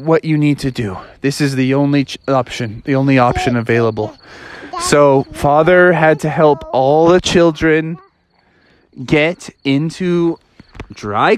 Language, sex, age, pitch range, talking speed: English, male, 20-39, 130-215 Hz, 130 wpm